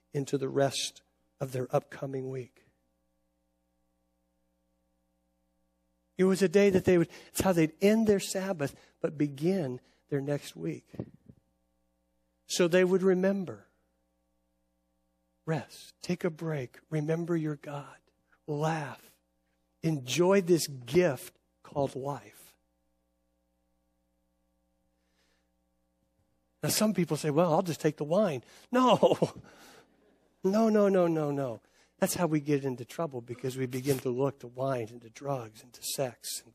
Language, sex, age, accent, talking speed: English, male, 60-79, American, 130 wpm